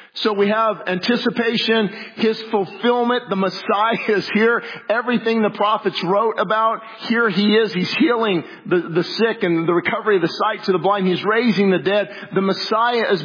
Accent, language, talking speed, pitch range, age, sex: American, English, 175 wpm, 185-220 Hz, 50-69, male